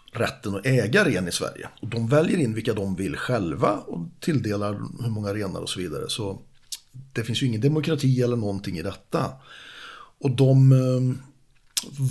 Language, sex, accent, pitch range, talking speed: Swedish, male, native, 100-130 Hz, 175 wpm